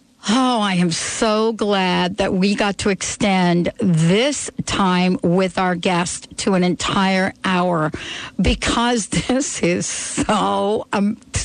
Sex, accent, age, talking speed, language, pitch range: female, American, 60-79, 125 wpm, English, 190-250 Hz